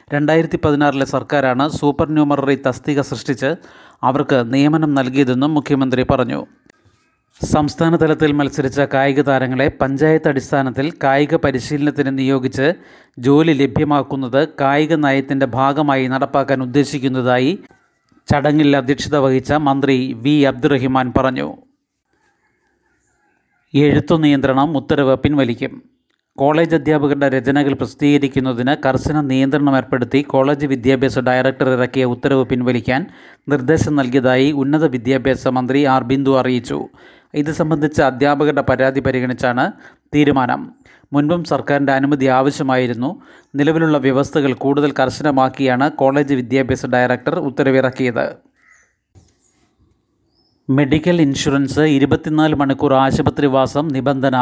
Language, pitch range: Malayalam, 130-150 Hz